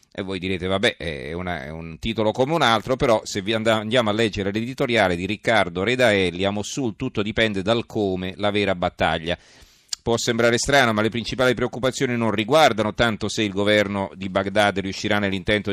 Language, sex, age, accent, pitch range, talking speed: Italian, male, 40-59, native, 95-110 Hz, 185 wpm